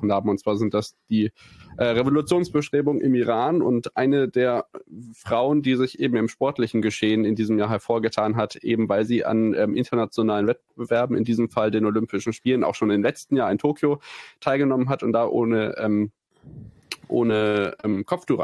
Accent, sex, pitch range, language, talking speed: German, male, 105-125 Hz, German, 175 wpm